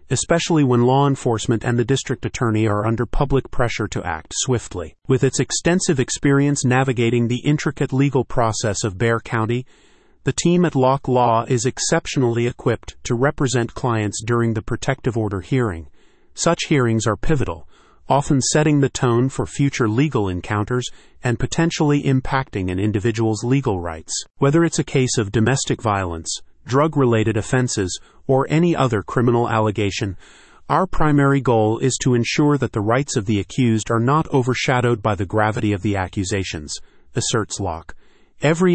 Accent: American